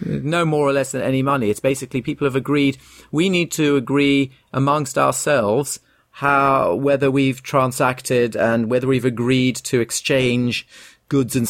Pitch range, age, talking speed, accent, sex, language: 120-140 Hz, 40-59, 170 wpm, British, male, English